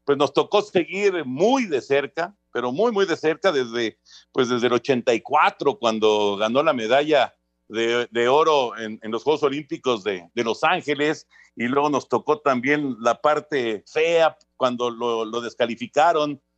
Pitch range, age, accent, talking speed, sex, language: 115-150 Hz, 50-69, Mexican, 165 wpm, male, Spanish